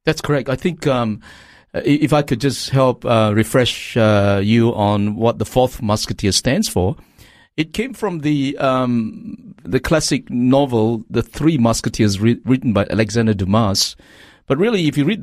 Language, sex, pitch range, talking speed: English, male, 110-135 Hz, 165 wpm